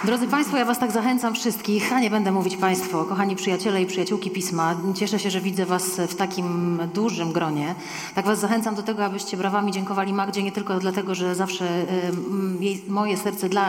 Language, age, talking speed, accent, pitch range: Polish, 30-49, 190 wpm, native, 170-200 Hz